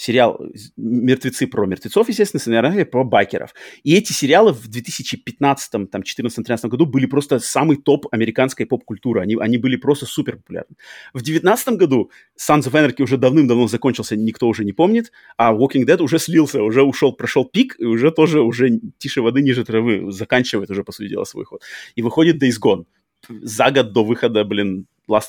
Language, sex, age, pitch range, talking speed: Russian, male, 30-49, 110-140 Hz, 175 wpm